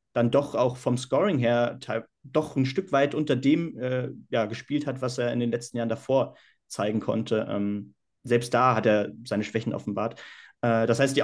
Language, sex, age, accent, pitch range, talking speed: German, male, 30-49, German, 120-140 Hz, 205 wpm